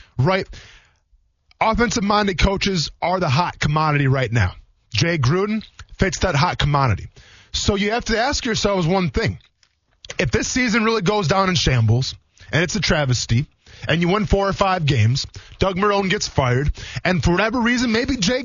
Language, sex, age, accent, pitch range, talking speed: English, male, 20-39, American, 120-195 Hz, 170 wpm